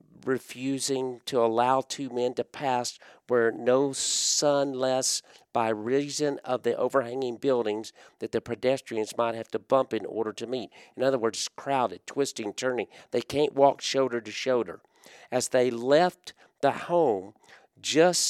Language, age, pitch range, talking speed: English, 50-69, 125-165 Hz, 150 wpm